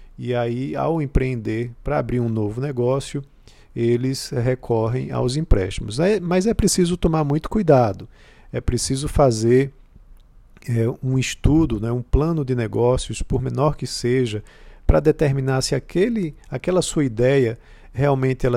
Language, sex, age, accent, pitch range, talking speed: Portuguese, male, 50-69, Brazilian, 120-150 Hz, 130 wpm